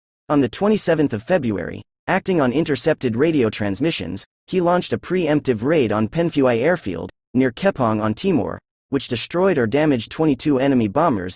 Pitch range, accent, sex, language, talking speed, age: 110-160 Hz, American, male, English, 155 wpm, 30-49